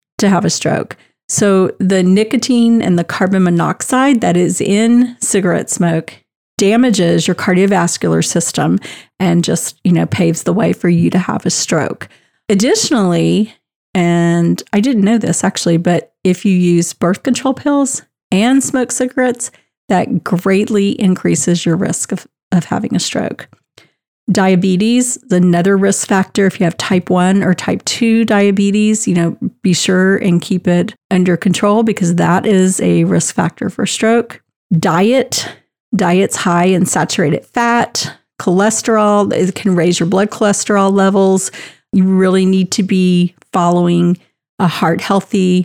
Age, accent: 40-59, American